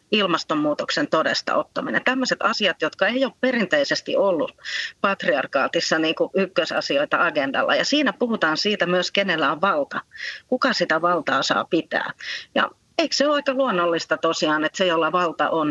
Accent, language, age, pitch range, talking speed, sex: native, Finnish, 30-49, 160-245 Hz, 150 wpm, female